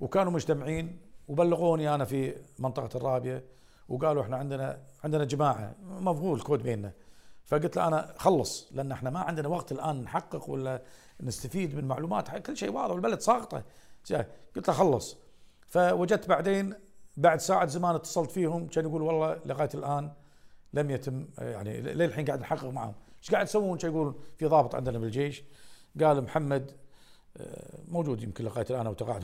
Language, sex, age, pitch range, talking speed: Arabic, male, 50-69, 135-175 Hz, 150 wpm